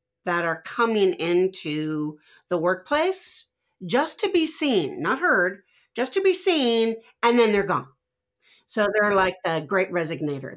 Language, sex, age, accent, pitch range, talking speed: English, female, 40-59, American, 165-230 Hz, 150 wpm